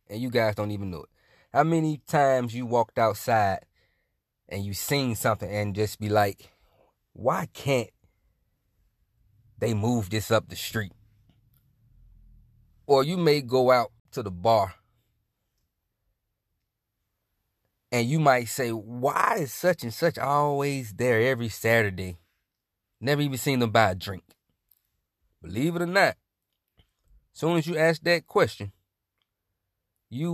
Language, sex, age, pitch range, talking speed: English, male, 30-49, 100-130 Hz, 135 wpm